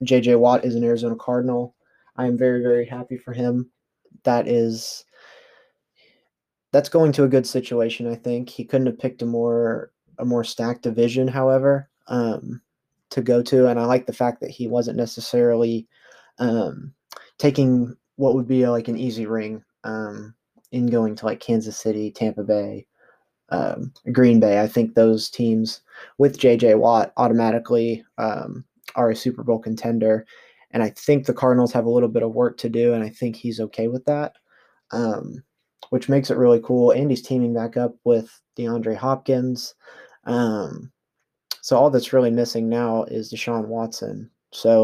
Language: English